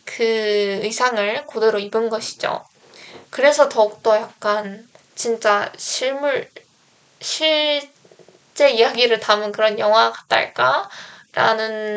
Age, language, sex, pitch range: 10-29, Korean, female, 210-245 Hz